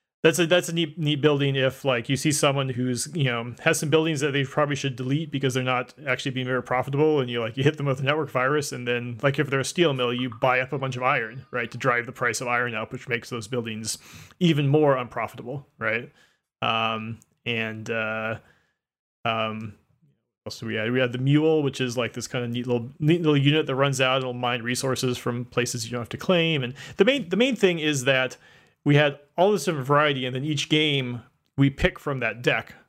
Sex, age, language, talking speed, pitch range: male, 30-49, English, 240 wpm, 120-150 Hz